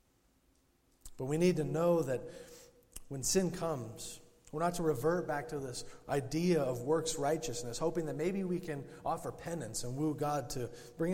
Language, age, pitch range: English, 40-59, 125-170 Hz